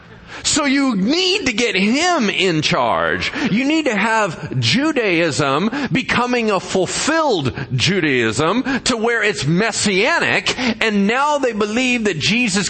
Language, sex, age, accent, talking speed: English, male, 40-59, American, 130 wpm